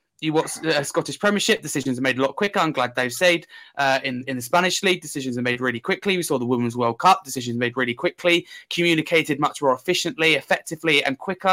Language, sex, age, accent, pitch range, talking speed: English, male, 20-39, British, 130-170 Hz, 225 wpm